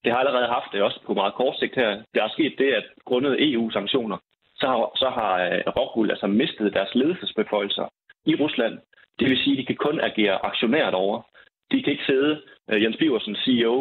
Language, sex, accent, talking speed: Danish, male, native, 200 wpm